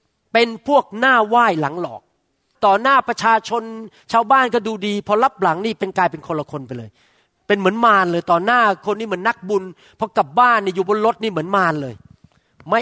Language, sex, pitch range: Thai, male, 165-235 Hz